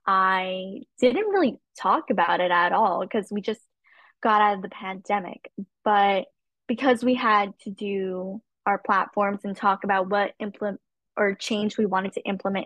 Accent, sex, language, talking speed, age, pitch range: American, female, English, 165 wpm, 10-29, 200-265 Hz